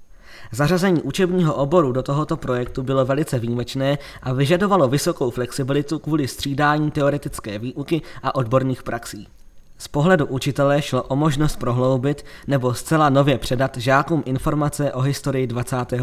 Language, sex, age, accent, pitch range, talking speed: Czech, male, 20-39, native, 125-150 Hz, 135 wpm